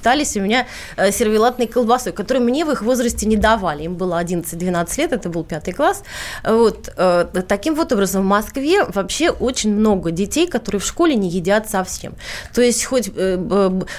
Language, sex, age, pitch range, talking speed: Russian, female, 20-39, 190-245 Hz, 165 wpm